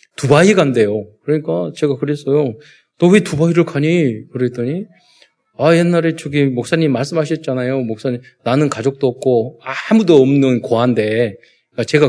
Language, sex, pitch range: Korean, male, 110-160 Hz